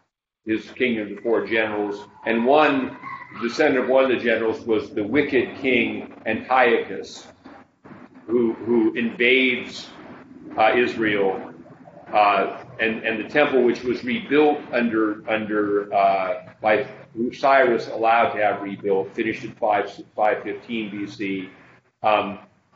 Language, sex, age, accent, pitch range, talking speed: English, male, 40-59, American, 105-130 Hz, 120 wpm